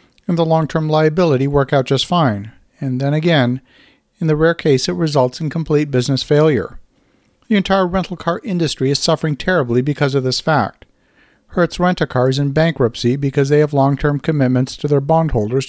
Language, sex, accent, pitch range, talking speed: English, male, American, 135-160 Hz, 185 wpm